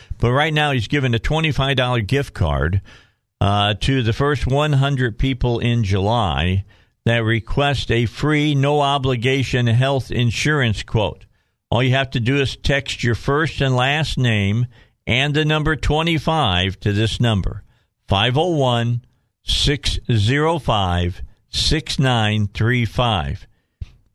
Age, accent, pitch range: 50-69, American, 105-135 Hz